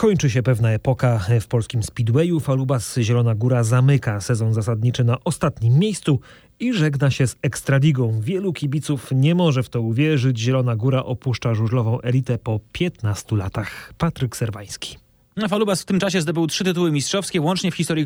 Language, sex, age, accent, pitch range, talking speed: Polish, male, 30-49, native, 120-185 Hz, 165 wpm